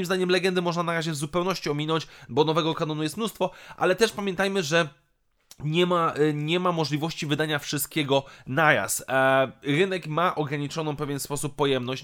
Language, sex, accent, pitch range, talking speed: Polish, male, native, 140-175 Hz, 175 wpm